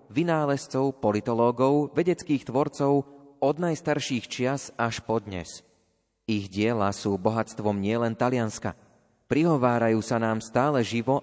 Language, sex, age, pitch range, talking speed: Slovak, male, 30-49, 110-135 Hz, 110 wpm